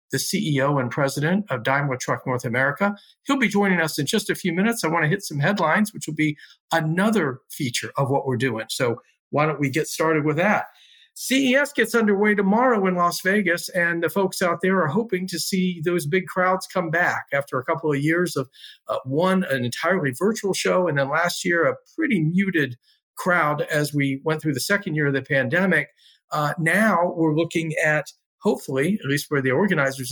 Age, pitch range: 50-69, 140-190 Hz